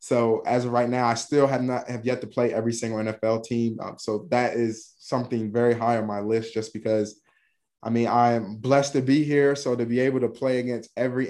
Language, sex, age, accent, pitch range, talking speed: English, male, 20-39, American, 115-130 Hz, 235 wpm